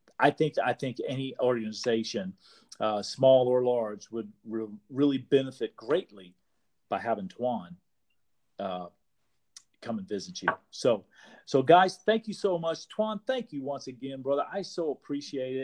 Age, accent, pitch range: 40-59, American, 125-165 Hz